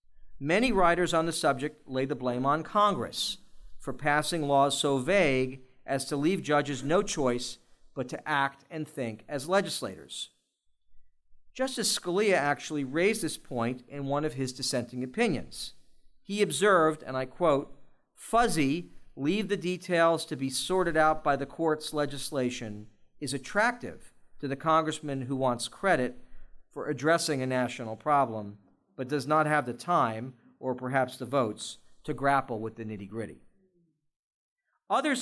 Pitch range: 130-165 Hz